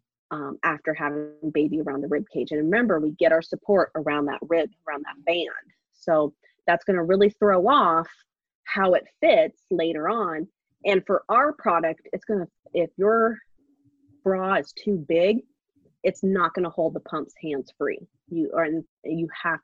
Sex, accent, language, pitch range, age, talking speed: female, American, English, 160-210 Hz, 30-49, 175 wpm